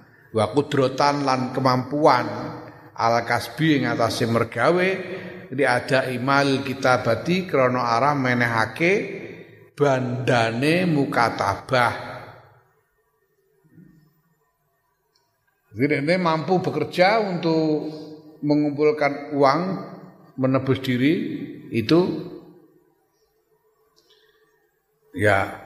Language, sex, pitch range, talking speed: Indonesian, male, 130-175 Hz, 65 wpm